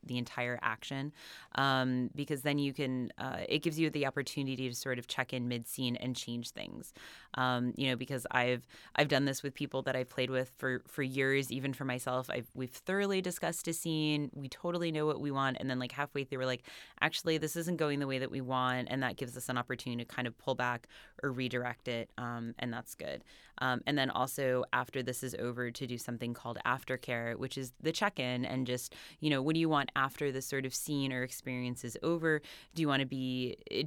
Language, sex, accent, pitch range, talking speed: English, female, American, 125-155 Hz, 230 wpm